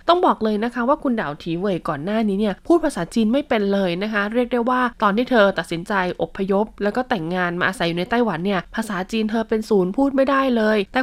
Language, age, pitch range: Thai, 20-39, 180-230 Hz